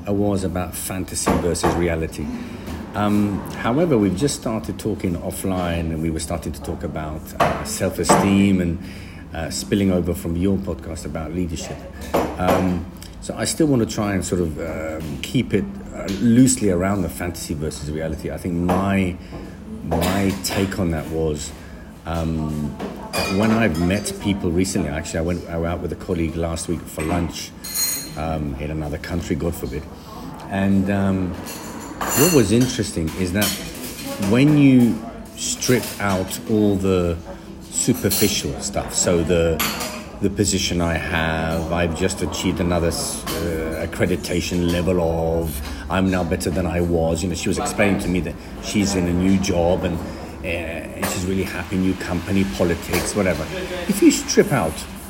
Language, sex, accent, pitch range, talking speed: English, male, British, 80-95 Hz, 155 wpm